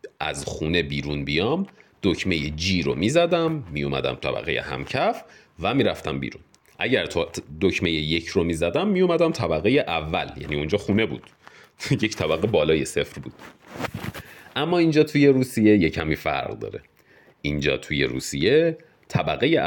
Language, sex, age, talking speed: Persian, male, 40-59, 145 wpm